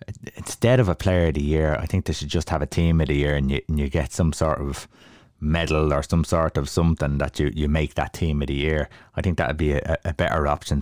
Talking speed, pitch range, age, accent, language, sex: 270 wpm, 75-95 Hz, 20-39, Irish, English, male